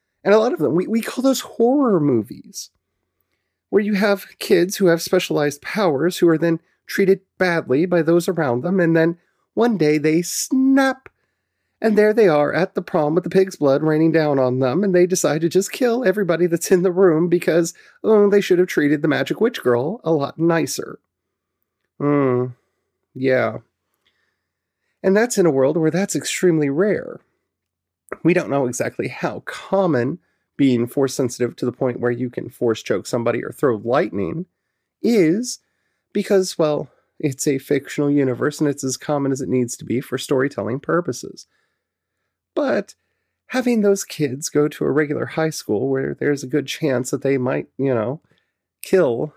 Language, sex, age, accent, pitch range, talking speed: English, male, 30-49, American, 135-190 Hz, 175 wpm